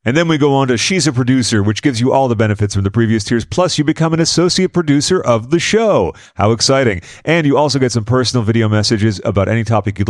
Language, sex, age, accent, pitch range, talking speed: English, male, 40-59, American, 100-130 Hz, 250 wpm